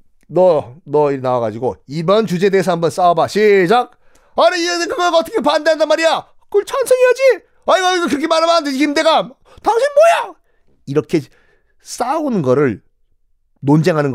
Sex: male